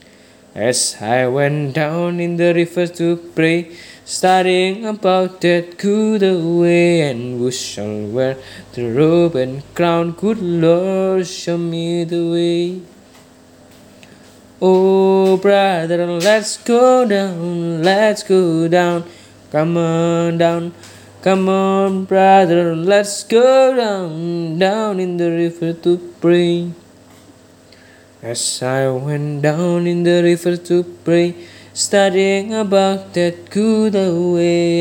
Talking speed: 115 wpm